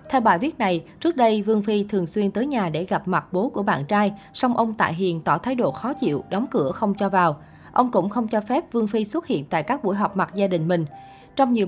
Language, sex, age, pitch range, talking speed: Vietnamese, female, 20-39, 180-225 Hz, 265 wpm